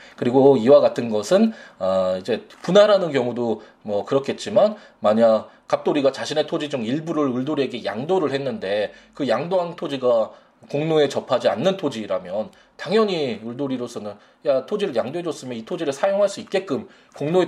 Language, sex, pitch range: Korean, male, 100-150 Hz